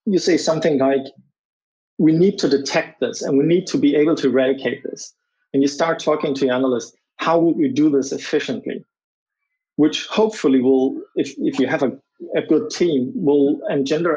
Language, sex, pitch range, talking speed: English, male, 135-185 Hz, 185 wpm